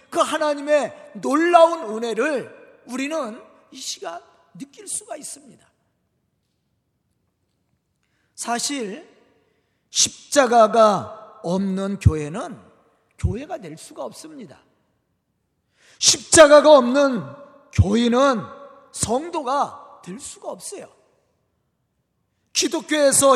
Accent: native